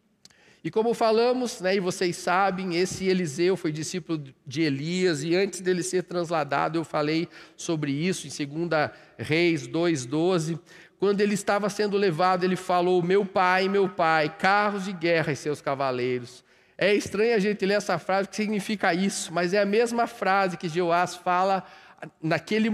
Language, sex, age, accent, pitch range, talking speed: Portuguese, male, 40-59, Brazilian, 170-220 Hz, 170 wpm